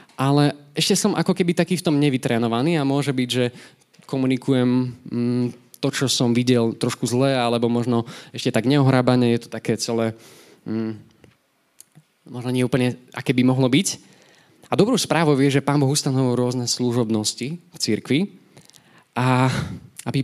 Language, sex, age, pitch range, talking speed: Slovak, male, 20-39, 115-145 Hz, 150 wpm